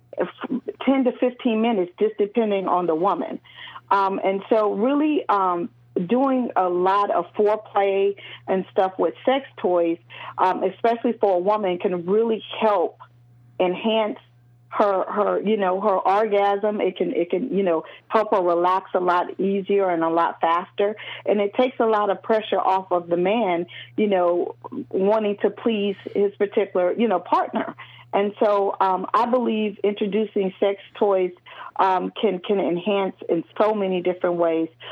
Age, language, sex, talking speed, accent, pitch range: 40-59, English, female, 160 wpm, American, 180-210 Hz